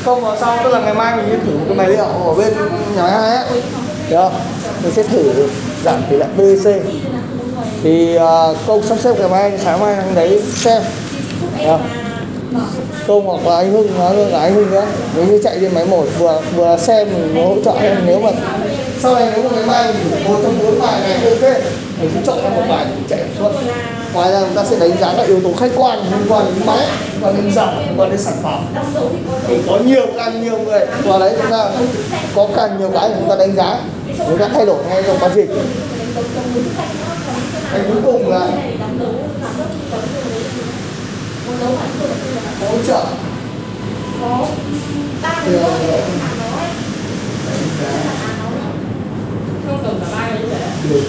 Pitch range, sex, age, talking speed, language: 185-230 Hz, male, 20-39, 170 wpm, Vietnamese